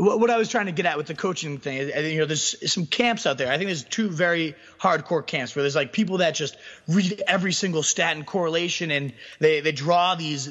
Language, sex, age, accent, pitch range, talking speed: English, male, 30-49, American, 145-180 Hz, 240 wpm